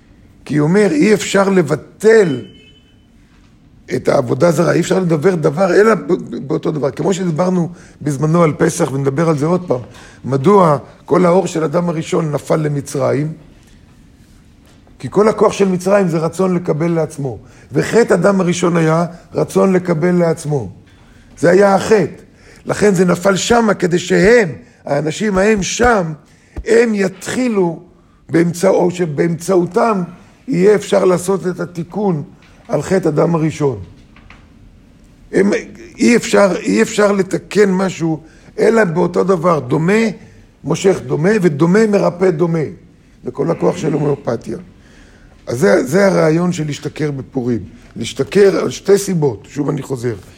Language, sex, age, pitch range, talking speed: Hebrew, male, 50-69, 145-195 Hz, 130 wpm